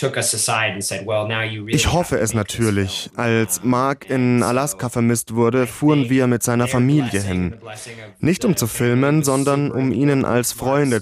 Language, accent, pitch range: German, German, 110-135 Hz